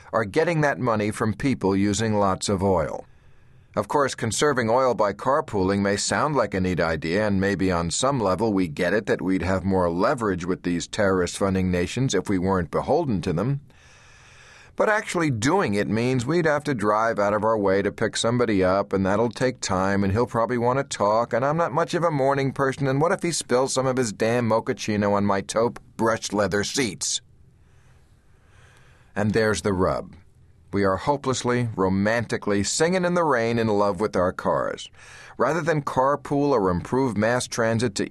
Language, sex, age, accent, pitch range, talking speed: English, male, 40-59, American, 100-130 Hz, 190 wpm